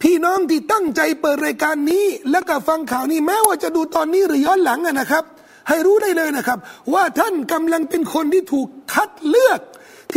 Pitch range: 270-365 Hz